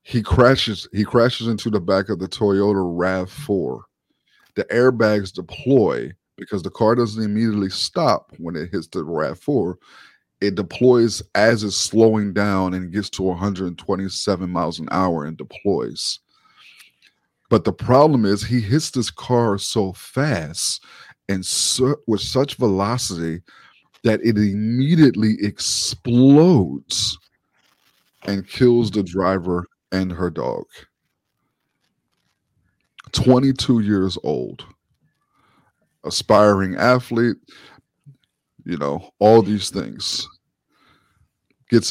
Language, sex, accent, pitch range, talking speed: English, male, American, 95-115 Hz, 110 wpm